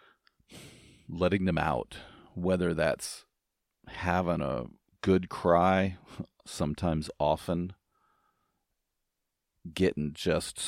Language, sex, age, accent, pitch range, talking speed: English, male, 40-59, American, 80-95 Hz, 75 wpm